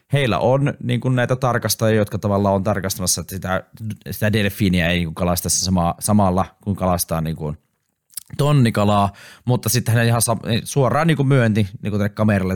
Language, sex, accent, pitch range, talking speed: Finnish, male, native, 90-115 Hz, 170 wpm